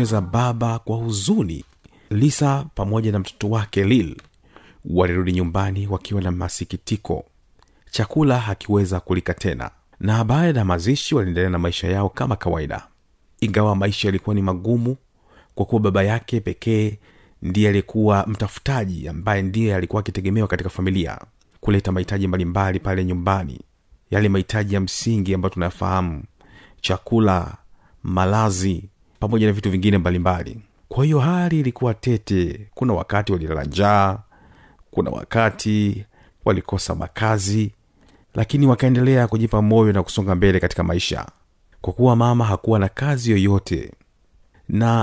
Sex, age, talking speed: male, 40-59, 130 wpm